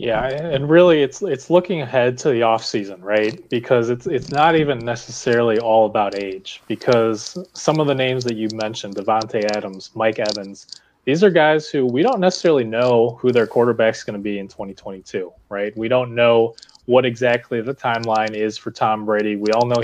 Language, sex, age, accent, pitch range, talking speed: English, male, 20-39, American, 110-130 Hz, 195 wpm